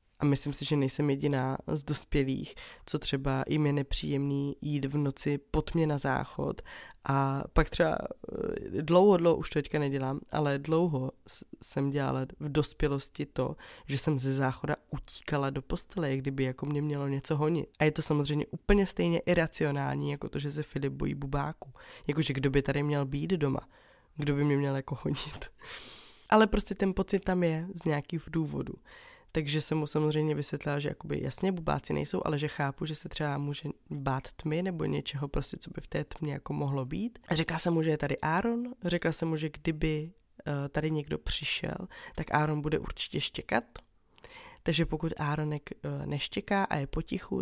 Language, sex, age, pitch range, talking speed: Czech, female, 20-39, 140-160 Hz, 180 wpm